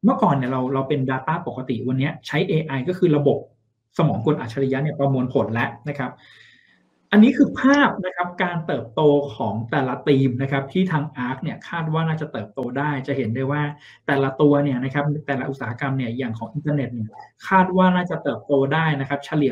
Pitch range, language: 130-165 Hz, Thai